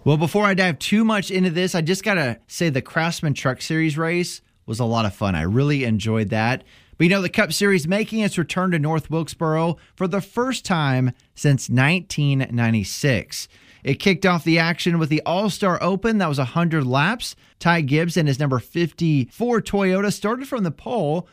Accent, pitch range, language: American, 125-180 Hz, English